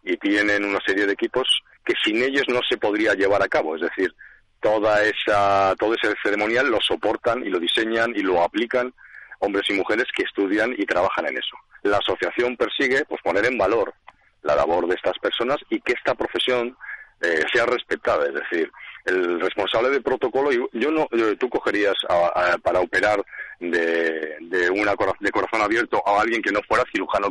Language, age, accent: Spanish, 40-59, Spanish